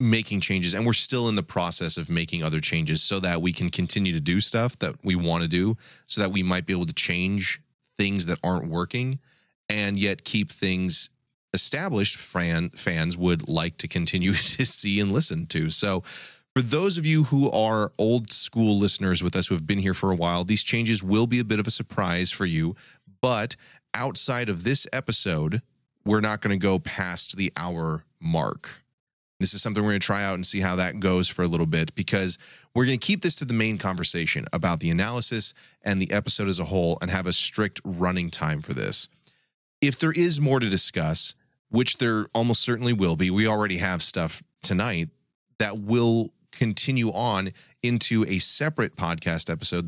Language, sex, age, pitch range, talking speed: English, male, 30-49, 90-120 Hz, 200 wpm